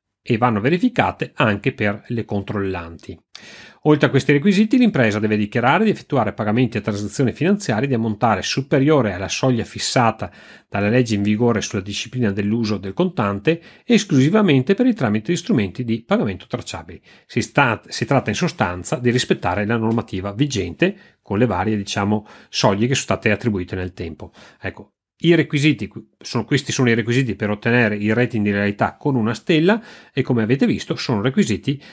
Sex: male